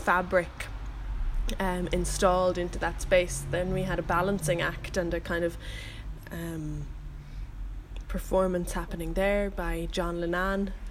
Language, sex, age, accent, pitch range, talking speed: English, female, 10-29, Irish, 165-185 Hz, 125 wpm